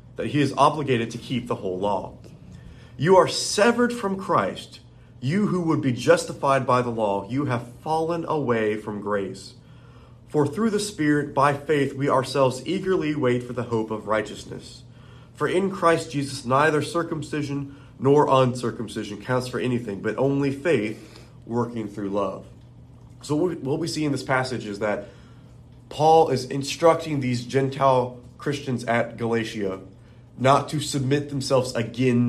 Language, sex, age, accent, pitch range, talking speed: English, male, 30-49, American, 115-140 Hz, 150 wpm